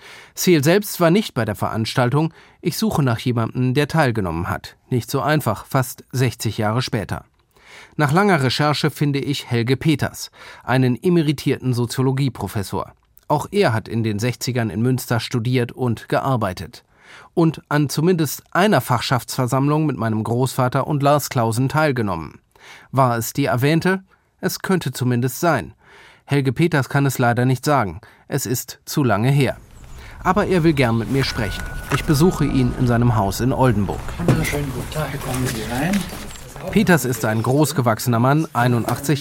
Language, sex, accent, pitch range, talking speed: German, male, German, 120-145 Hz, 145 wpm